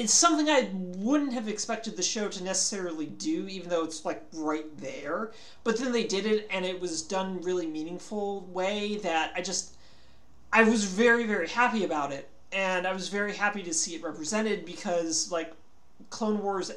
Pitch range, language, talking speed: 155-200 Hz, English, 185 wpm